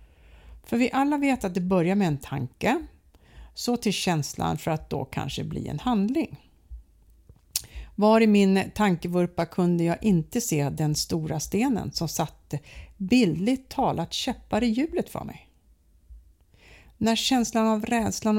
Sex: female